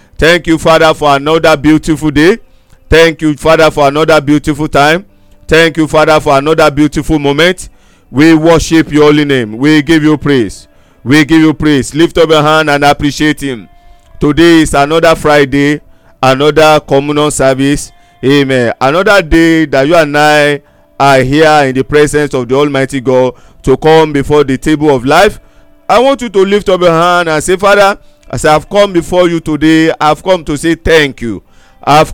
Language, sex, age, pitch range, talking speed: English, male, 50-69, 135-160 Hz, 175 wpm